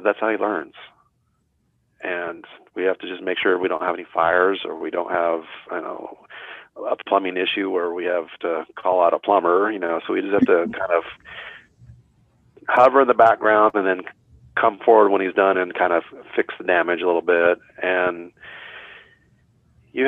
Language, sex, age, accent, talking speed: English, male, 40-59, American, 190 wpm